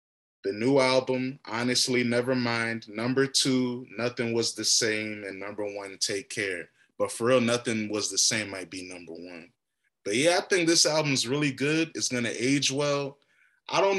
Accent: American